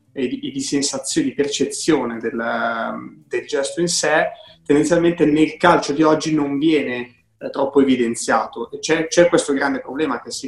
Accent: native